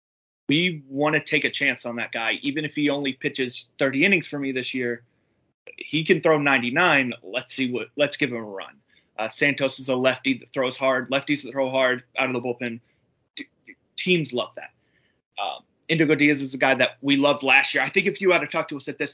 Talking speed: 230 wpm